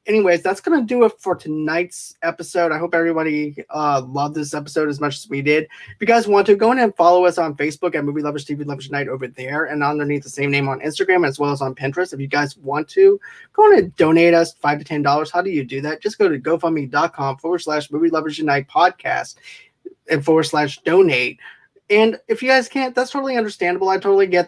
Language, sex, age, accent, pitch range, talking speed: English, male, 20-39, American, 150-180 Hz, 235 wpm